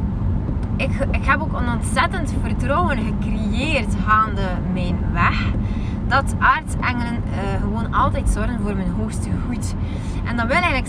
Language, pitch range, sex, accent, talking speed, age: Dutch, 95-105 Hz, female, Dutch, 140 wpm, 20-39